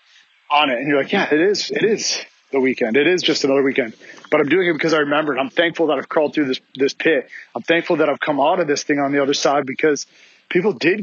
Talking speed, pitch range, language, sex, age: 270 wpm, 135-155 Hz, English, male, 30-49